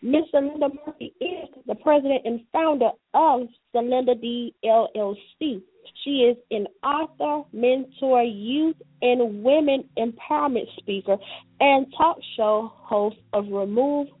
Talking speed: 120 wpm